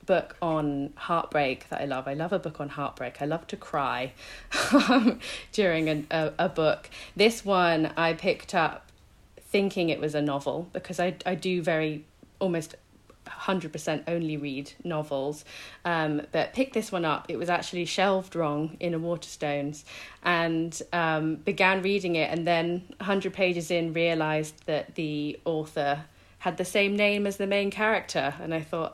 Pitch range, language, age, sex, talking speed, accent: 150-185 Hz, English, 40-59, female, 165 wpm, British